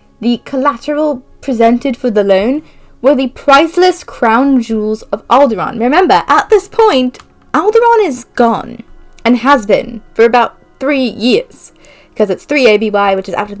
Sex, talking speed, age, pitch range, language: female, 155 wpm, 20-39, 215-290 Hz, English